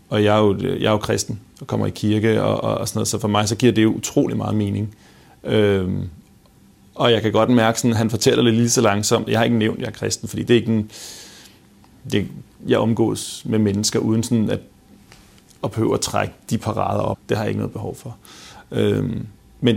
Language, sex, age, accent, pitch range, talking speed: English, male, 30-49, Danish, 105-120 Hz, 230 wpm